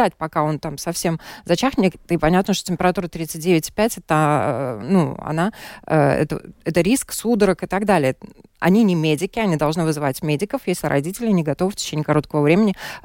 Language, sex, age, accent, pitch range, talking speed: Russian, female, 20-39, native, 150-180 Hz, 145 wpm